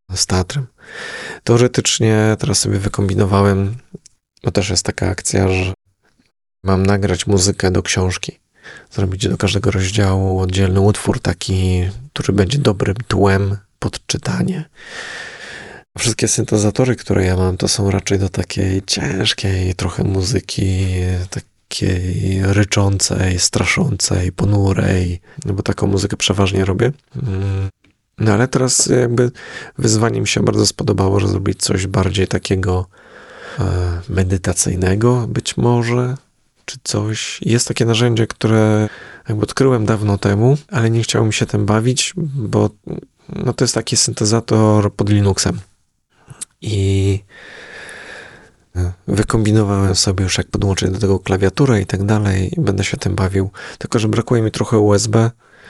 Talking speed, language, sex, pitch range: 125 wpm, Polish, male, 95-115 Hz